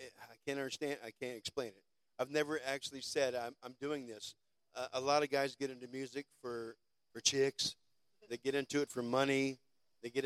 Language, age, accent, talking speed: English, 50-69, American, 200 wpm